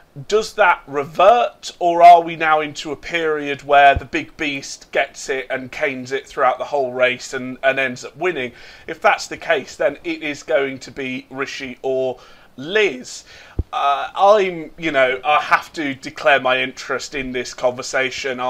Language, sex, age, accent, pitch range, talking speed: English, male, 30-49, British, 130-160 Hz, 175 wpm